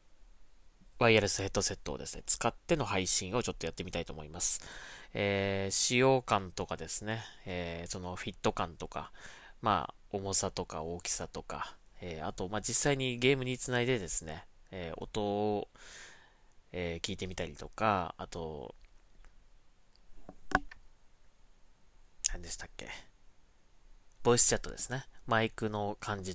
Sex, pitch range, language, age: male, 90-125 Hz, Japanese, 20-39